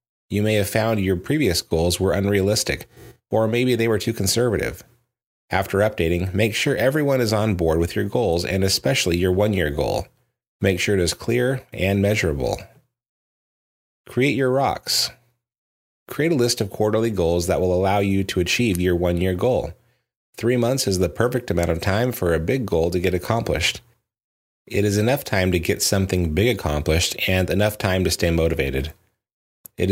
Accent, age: American, 30-49